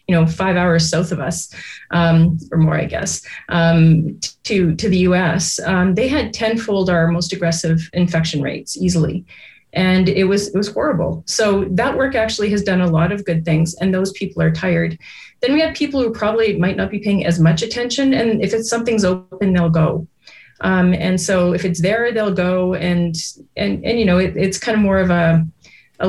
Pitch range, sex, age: 170-205 Hz, female, 30-49